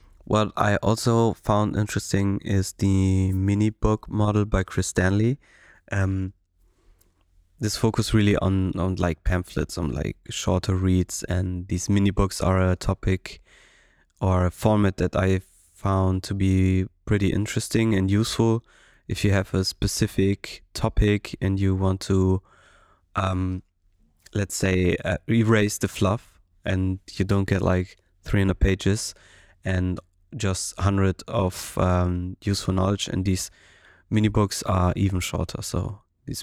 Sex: male